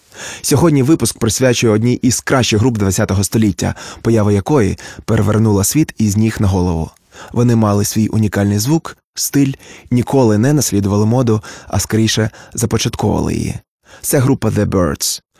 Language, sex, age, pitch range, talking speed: Ukrainian, male, 20-39, 100-120 Hz, 135 wpm